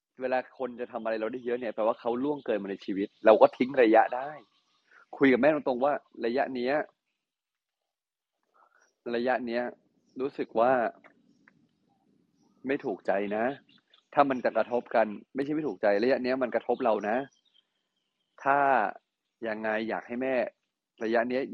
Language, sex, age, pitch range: Thai, male, 30-49, 115-150 Hz